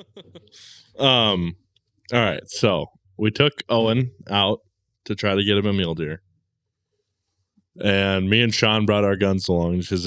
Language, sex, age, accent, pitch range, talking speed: English, male, 20-39, American, 90-110 Hz, 150 wpm